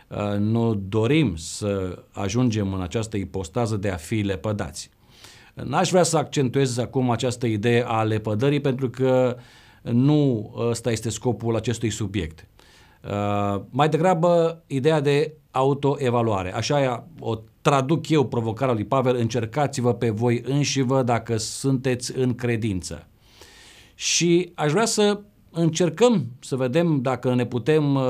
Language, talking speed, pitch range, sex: Romanian, 125 wpm, 115-145 Hz, male